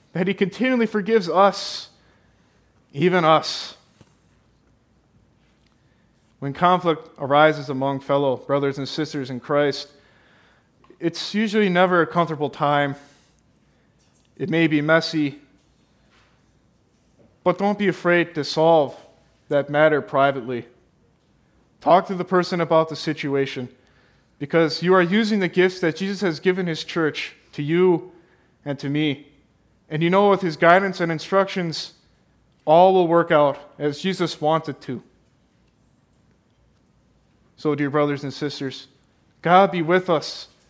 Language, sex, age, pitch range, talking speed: English, male, 20-39, 145-185 Hz, 125 wpm